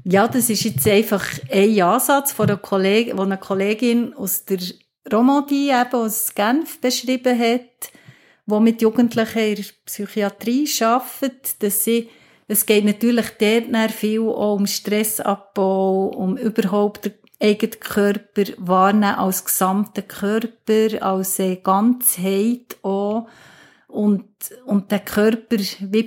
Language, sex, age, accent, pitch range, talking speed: German, female, 50-69, Swiss, 200-240 Hz, 125 wpm